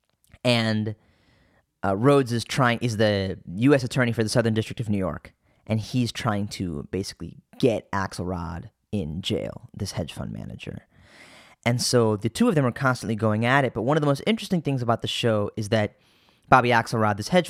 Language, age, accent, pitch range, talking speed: English, 10-29, American, 105-125 Hz, 190 wpm